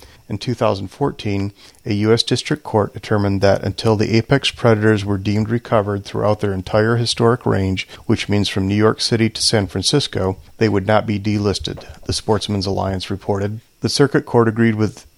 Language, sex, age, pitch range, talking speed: English, male, 40-59, 100-115 Hz, 170 wpm